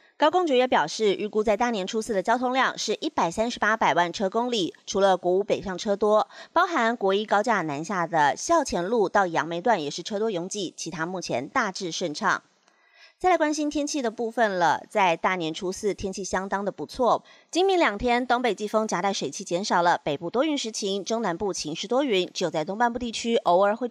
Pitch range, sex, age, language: 180-240 Hz, female, 30-49, Chinese